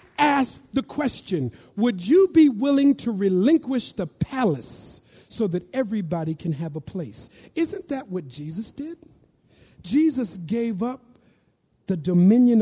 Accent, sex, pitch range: American, male, 155-250 Hz